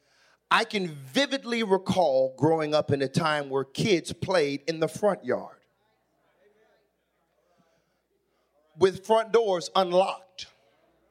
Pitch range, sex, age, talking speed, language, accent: 155-195 Hz, male, 40-59, 110 wpm, English, American